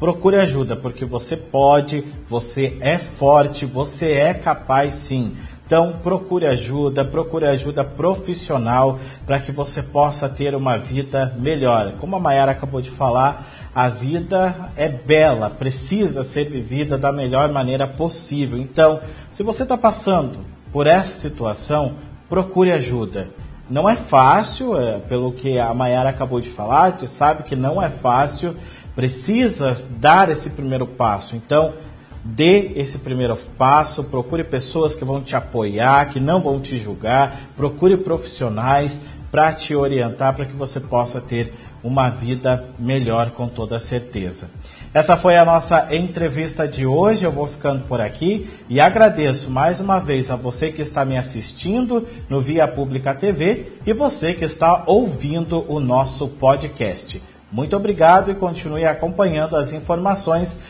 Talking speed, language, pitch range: 145 wpm, Portuguese, 130-165 Hz